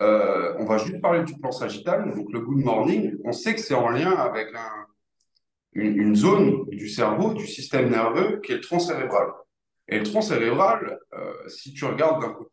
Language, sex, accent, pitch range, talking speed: French, male, French, 125-175 Hz, 205 wpm